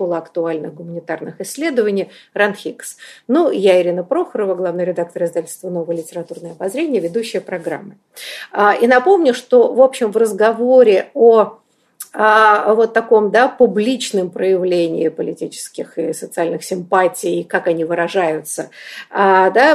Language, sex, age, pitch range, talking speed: Russian, female, 50-69, 190-255 Hz, 120 wpm